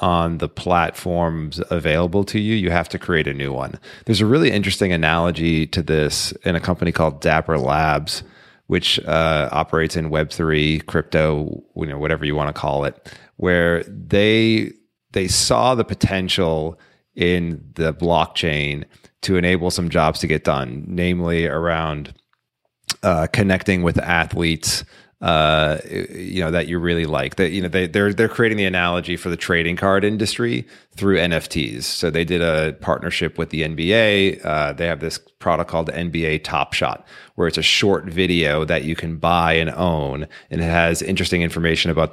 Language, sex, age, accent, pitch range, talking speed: English, male, 30-49, American, 80-90 Hz, 170 wpm